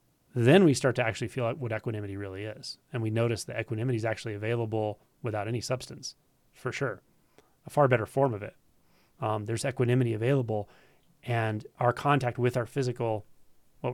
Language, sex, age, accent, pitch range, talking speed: English, male, 30-49, American, 110-135 Hz, 175 wpm